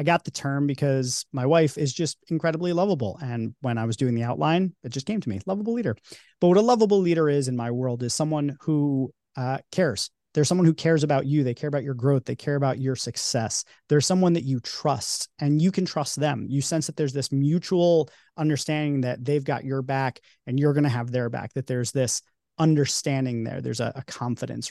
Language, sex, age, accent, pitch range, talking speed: English, male, 30-49, American, 130-160 Hz, 225 wpm